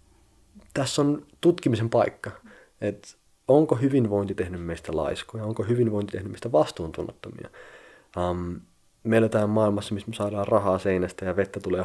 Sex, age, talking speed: male, 30-49, 130 wpm